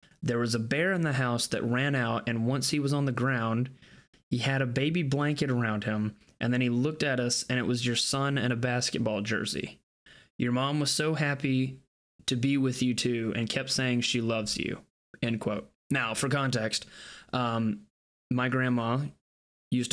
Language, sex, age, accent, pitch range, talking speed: English, male, 20-39, American, 115-135 Hz, 195 wpm